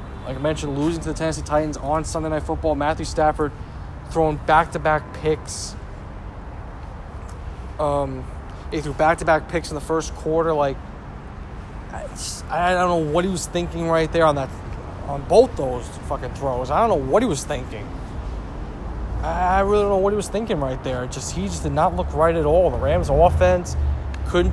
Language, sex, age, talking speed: English, male, 20-39, 185 wpm